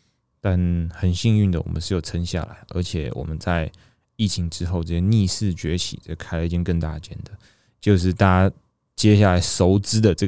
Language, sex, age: Chinese, male, 20-39